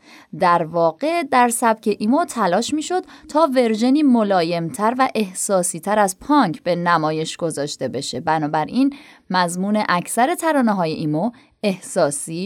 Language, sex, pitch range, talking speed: Persian, female, 185-265 Hz, 130 wpm